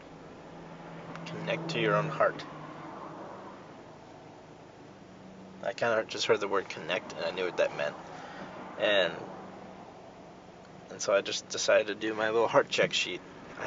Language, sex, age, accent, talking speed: English, male, 20-39, American, 145 wpm